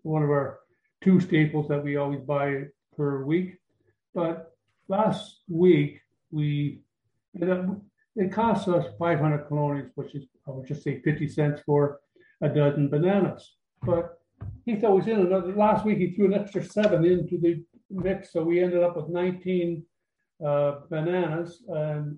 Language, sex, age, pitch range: English, male, 60-79, 145-180 Hz